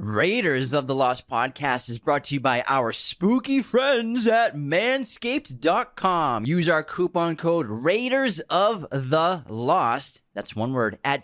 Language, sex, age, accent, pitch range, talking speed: English, male, 30-49, American, 120-200 Hz, 145 wpm